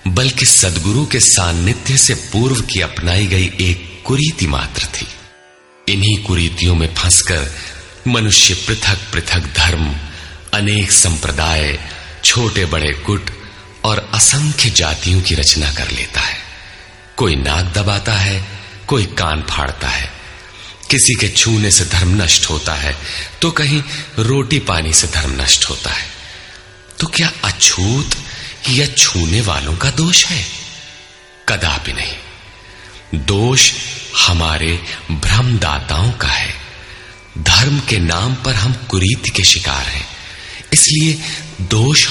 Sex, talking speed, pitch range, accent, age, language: male, 125 wpm, 80-110 Hz, native, 40-59, Hindi